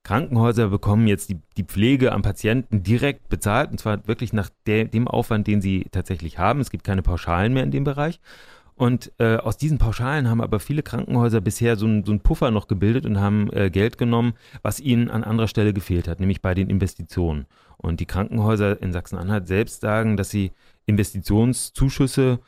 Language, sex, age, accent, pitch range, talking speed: German, male, 30-49, German, 100-120 Hz, 185 wpm